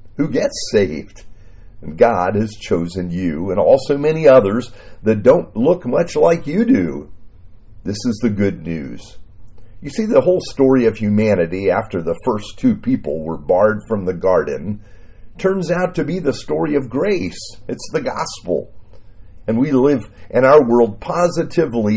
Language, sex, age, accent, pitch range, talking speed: English, male, 50-69, American, 100-140 Hz, 160 wpm